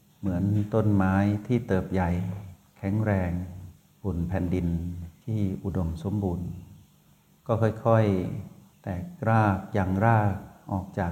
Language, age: Thai, 60-79